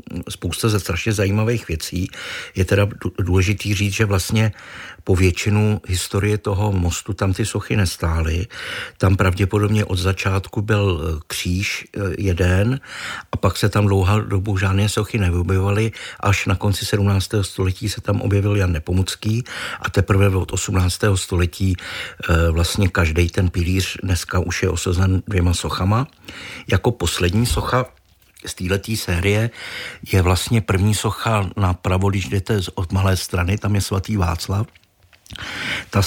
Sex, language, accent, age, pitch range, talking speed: male, Czech, native, 60-79, 90-105 Hz, 135 wpm